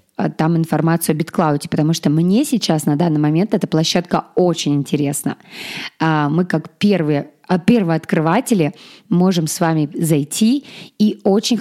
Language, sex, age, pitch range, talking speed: Russian, female, 20-39, 160-205 Hz, 135 wpm